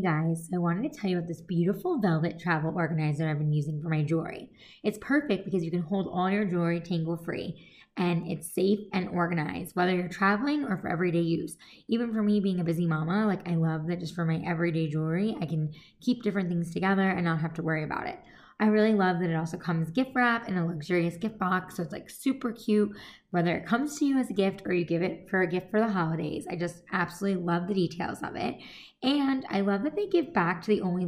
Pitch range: 170-210 Hz